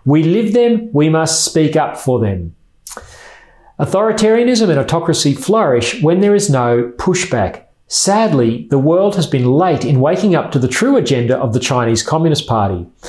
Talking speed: 165 wpm